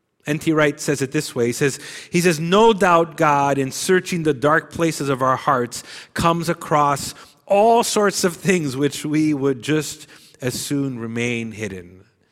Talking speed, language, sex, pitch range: 170 wpm, English, male, 115-160 Hz